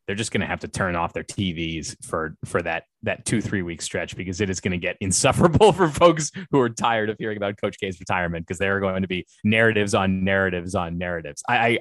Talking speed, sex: 240 wpm, male